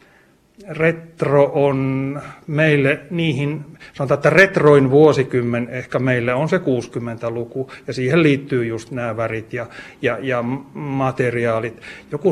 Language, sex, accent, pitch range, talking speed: Finnish, male, native, 120-140 Hz, 115 wpm